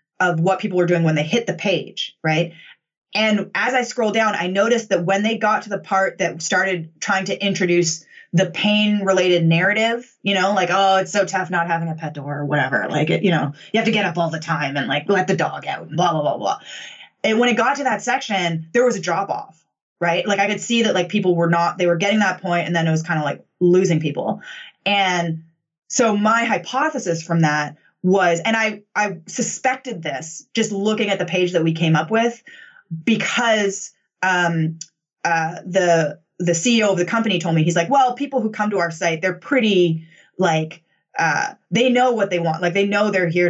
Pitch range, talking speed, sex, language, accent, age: 165-210 Hz, 225 wpm, female, English, American, 20-39